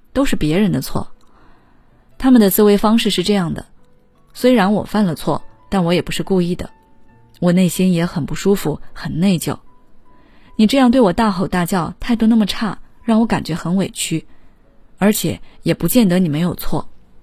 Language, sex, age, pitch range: Chinese, female, 20-39, 165-210 Hz